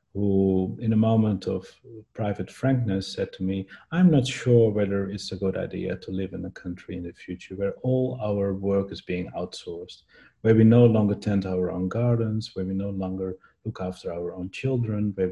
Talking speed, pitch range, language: 200 wpm, 95-115 Hz, English